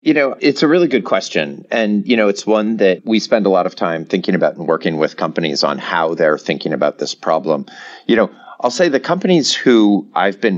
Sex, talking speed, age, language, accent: male, 235 wpm, 40-59, English, American